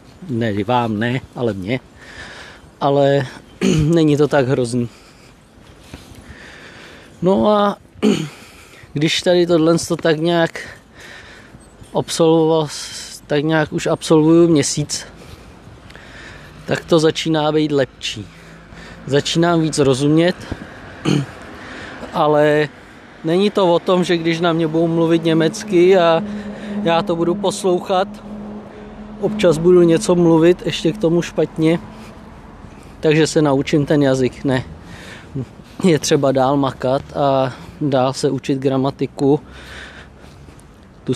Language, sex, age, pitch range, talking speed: Czech, male, 20-39, 130-170 Hz, 105 wpm